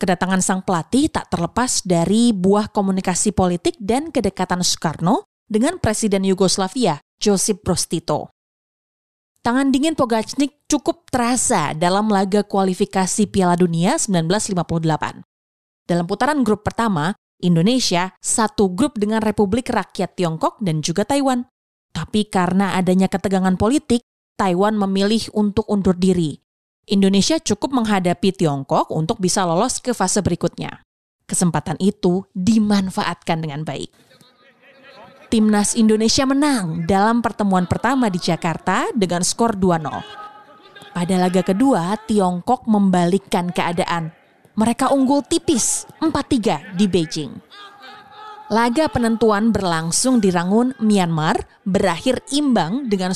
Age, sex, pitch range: 20-39, female, 180-235 Hz